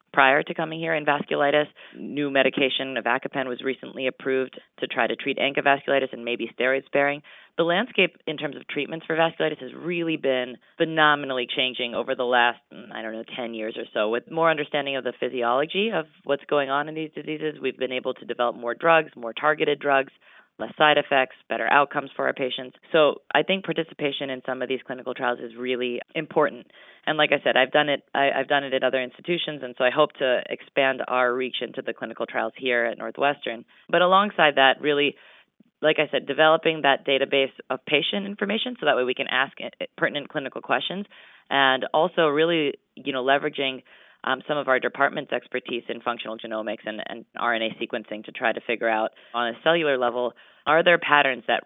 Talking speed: 200 wpm